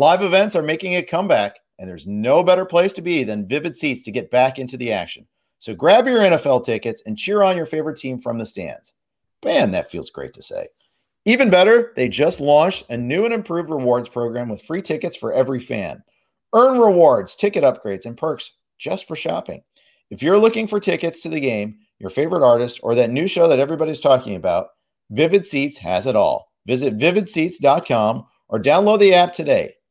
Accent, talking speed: American, 200 wpm